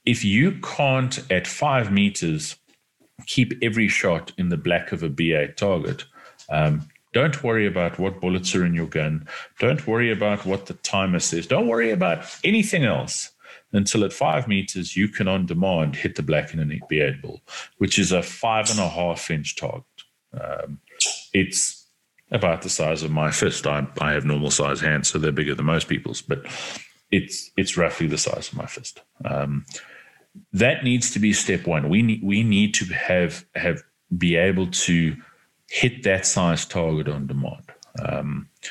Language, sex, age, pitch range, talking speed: English, male, 40-59, 80-110 Hz, 175 wpm